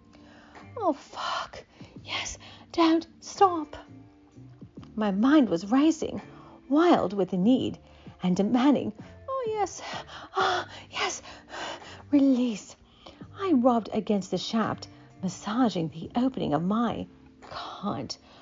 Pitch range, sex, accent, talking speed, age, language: 185-280 Hz, female, American, 100 wpm, 40-59, English